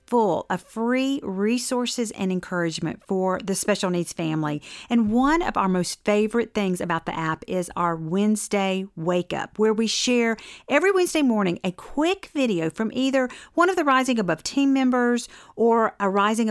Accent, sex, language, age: American, female, English, 40-59